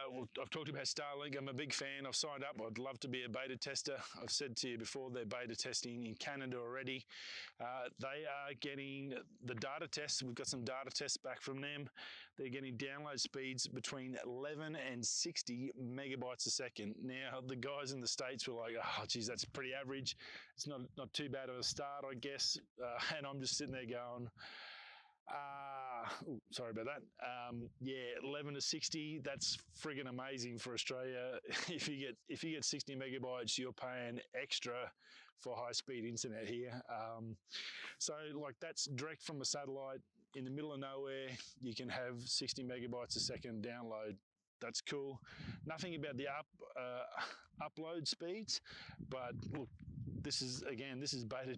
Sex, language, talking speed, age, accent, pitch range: male, English, 180 wpm, 20-39, Australian, 125-140 Hz